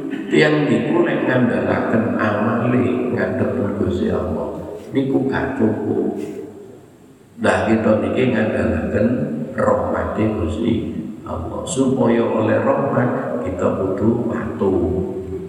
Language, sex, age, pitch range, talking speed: Indonesian, male, 50-69, 110-155 Hz, 90 wpm